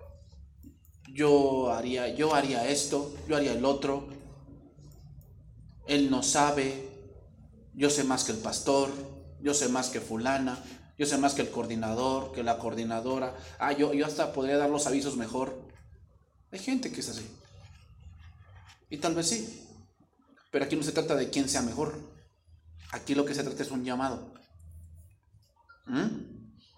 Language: English